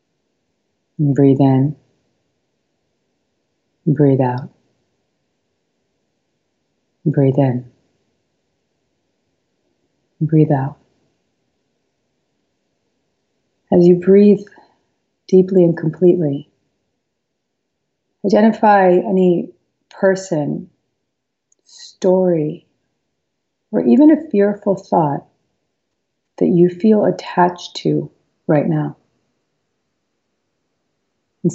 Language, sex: English, female